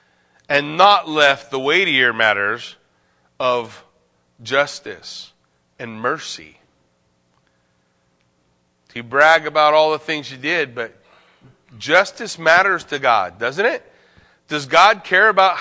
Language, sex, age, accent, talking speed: English, male, 40-59, American, 110 wpm